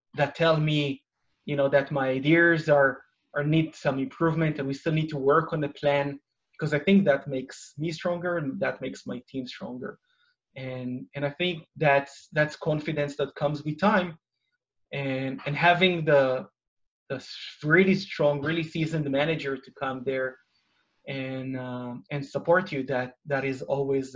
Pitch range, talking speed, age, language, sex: 135-165 Hz, 170 wpm, 20-39, English, male